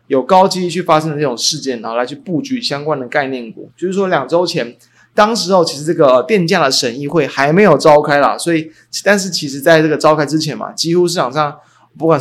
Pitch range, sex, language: 130-170 Hz, male, Chinese